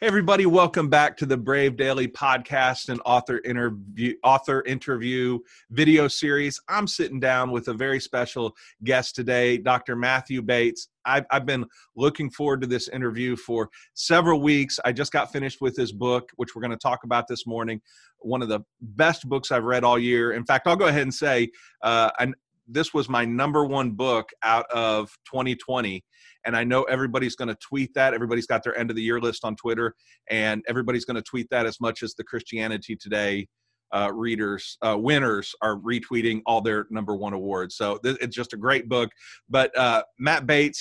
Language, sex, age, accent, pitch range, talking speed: English, male, 40-59, American, 120-135 Hz, 195 wpm